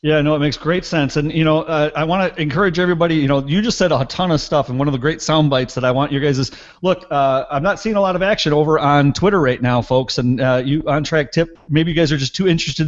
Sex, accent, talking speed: male, American, 305 wpm